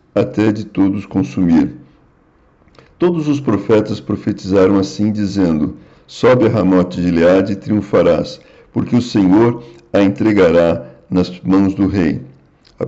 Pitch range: 90-115 Hz